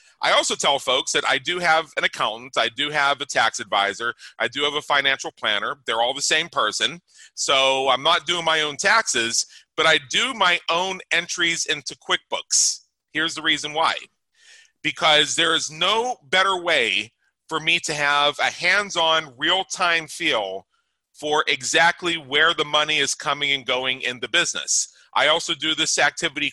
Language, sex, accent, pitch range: English, male, American, 145-175 Hz